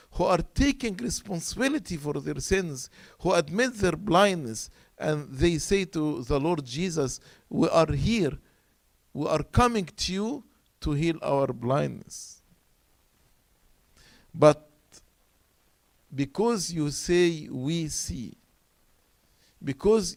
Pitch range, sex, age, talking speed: 120-185 Hz, male, 50-69, 110 wpm